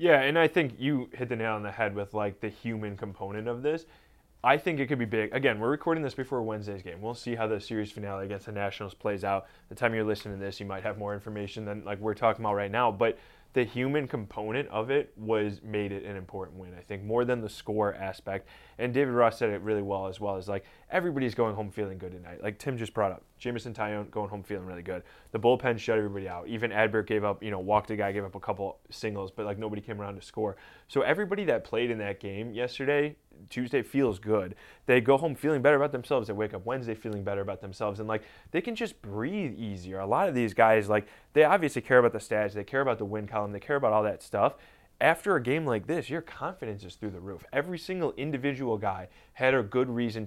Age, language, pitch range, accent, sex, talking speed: 20-39, English, 100-125 Hz, American, male, 250 wpm